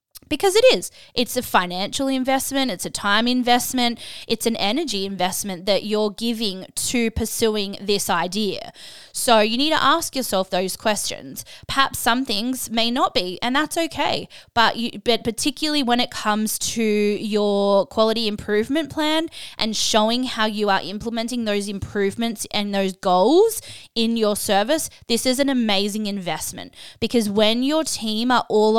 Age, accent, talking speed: 20-39, Australian, 155 wpm